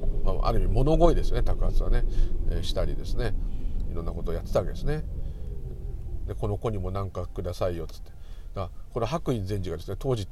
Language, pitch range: Japanese, 90-120 Hz